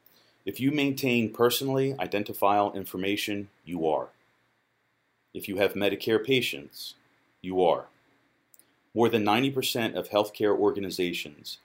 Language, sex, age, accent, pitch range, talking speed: English, male, 40-59, American, 90-110 Hz, 110 wpm